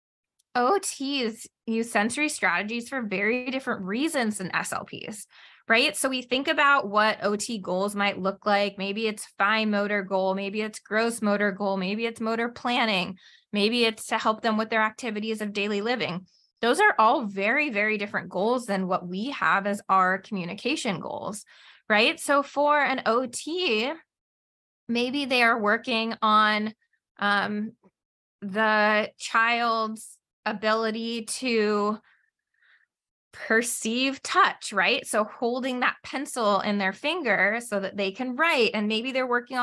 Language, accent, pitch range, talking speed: English, American, 205-255 Hz, 145 wpm